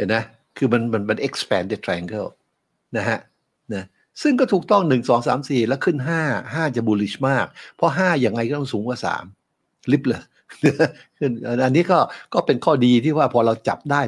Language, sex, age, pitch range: Thai, male, 60-79, 115-165 Hz